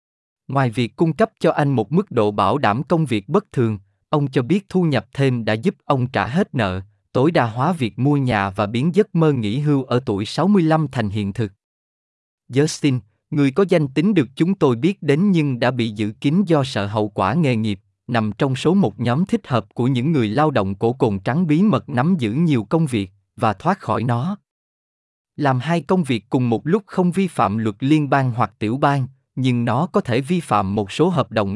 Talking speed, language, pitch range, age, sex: 225 wpm, Vietnamese, 110-160 Hz, 20-39, male